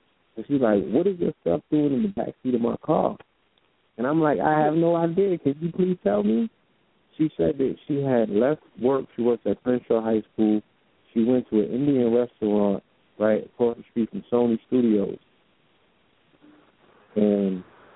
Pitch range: 105-125 Hz